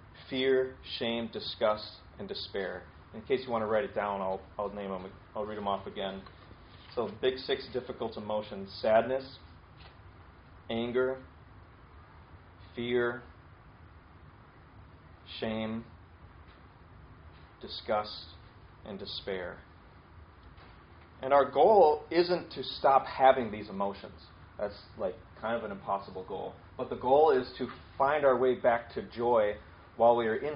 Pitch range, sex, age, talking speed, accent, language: 95-125 Hz, male, 30-49, 130 wpm, American, English